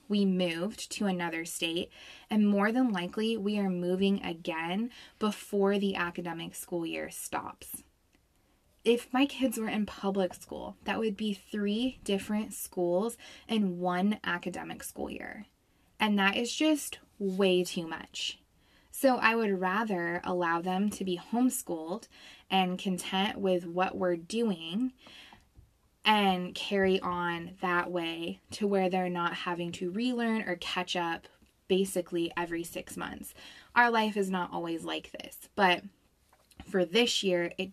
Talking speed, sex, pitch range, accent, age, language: 145 wpm, female, 175-220 Hz, American, 20-39, English